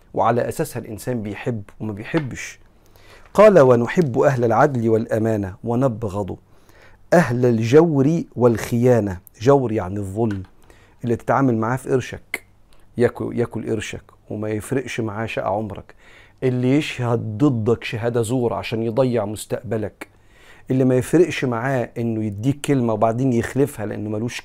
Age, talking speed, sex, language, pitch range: 40-59, 120 wpm, male, Arabic, 105-130 Hz